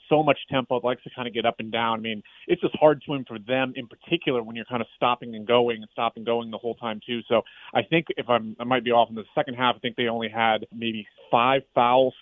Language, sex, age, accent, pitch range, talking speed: English, male, 30-49, American, 115-130 Hz, 280 wpm